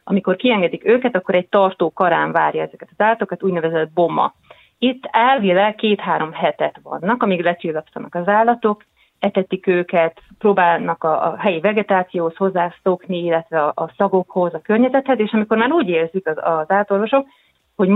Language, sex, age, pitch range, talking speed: Hungarian, female, 30-49, 165-200 Hz, 140 wpm